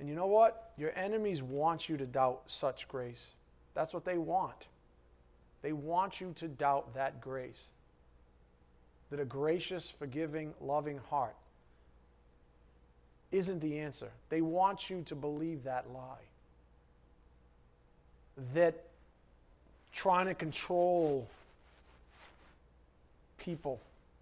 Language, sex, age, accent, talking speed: English, male, 40-59, American, 110 wpm